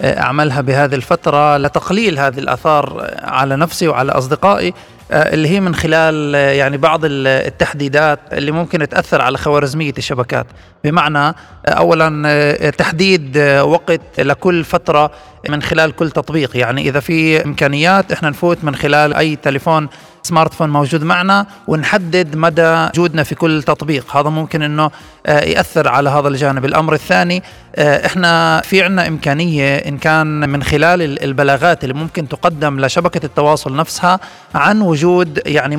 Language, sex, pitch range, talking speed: Arabic, male, 145-175 Hz, 130 wpm